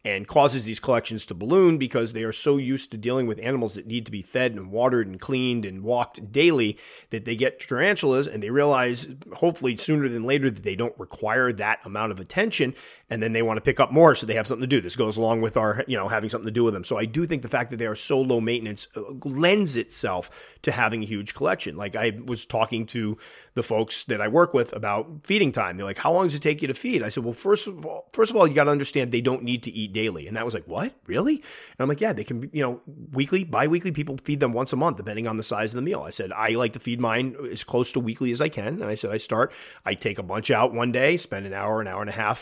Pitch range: 110-140 Hz